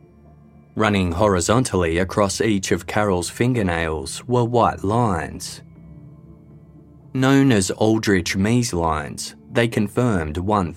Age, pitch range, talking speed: 20-39, 90-115 Hz, 100 wpm